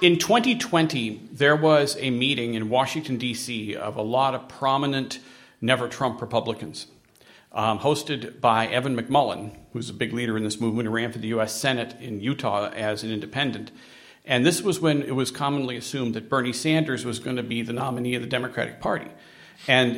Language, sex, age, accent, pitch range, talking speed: English, male, 40-59, American, 115-150 Hz, 185 wpm